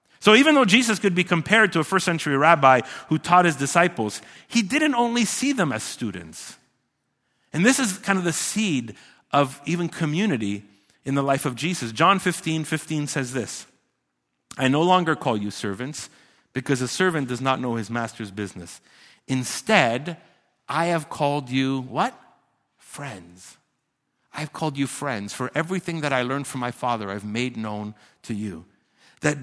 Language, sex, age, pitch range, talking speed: English, male, 50-69, 125-175 Hz, 170 wpm